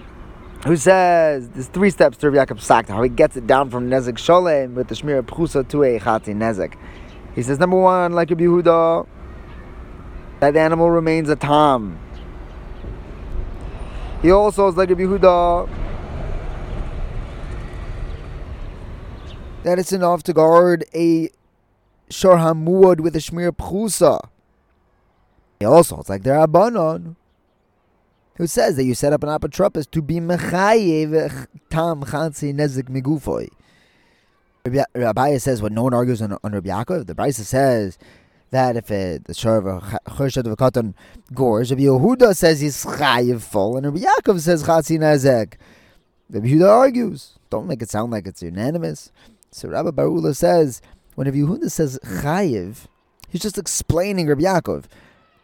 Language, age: English, 20-39